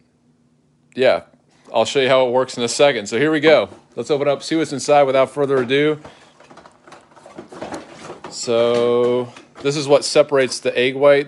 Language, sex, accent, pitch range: English, male, American, 115-140 Hz